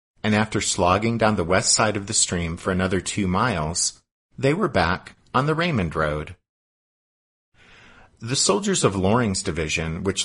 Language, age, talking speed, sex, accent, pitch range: English, 50-69, 160 wpm, male, American, 85-120 Hz